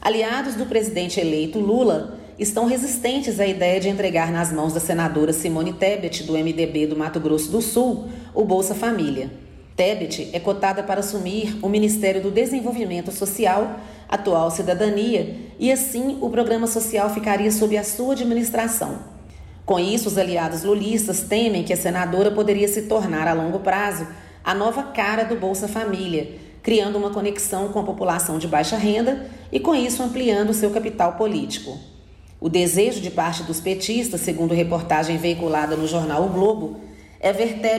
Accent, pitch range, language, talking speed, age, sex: Brazilian, 180-225 Hz, Portuguese, 160 wpm, 40-59, female